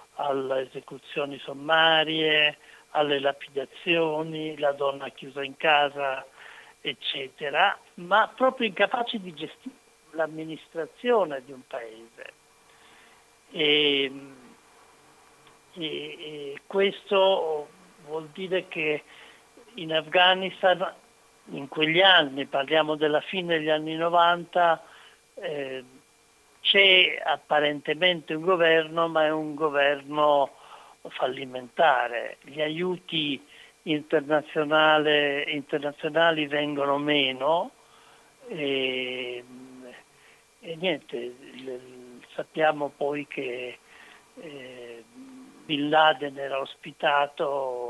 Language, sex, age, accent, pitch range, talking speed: Italian, male, 60-79, native, 140-165 Hz, 80 wpm